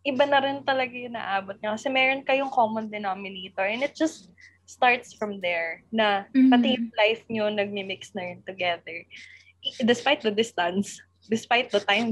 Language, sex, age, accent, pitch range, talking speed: Filipino, female, 20-39, native, 200-265 Hz, 160 wpm